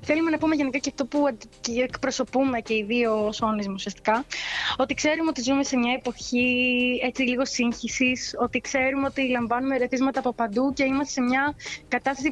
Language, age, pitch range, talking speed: Greek, 20-39, 235-285 Hz, 170 wpm